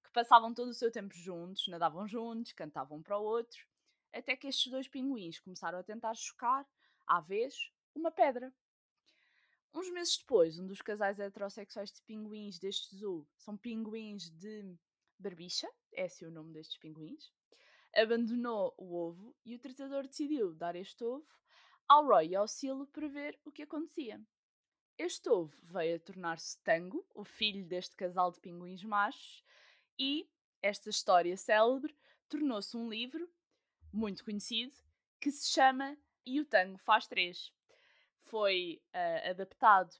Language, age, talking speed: Portuguese, 20-39, 145 wpm